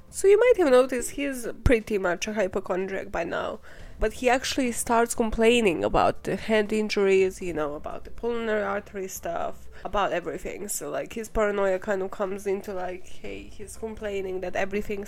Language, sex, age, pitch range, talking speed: English, female, 20-39, 190-235 Hz, 175 wpm